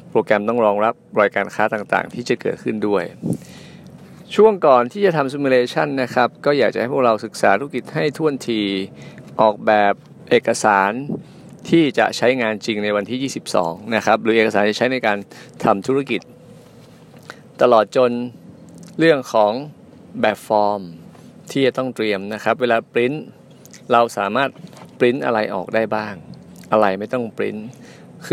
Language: Thai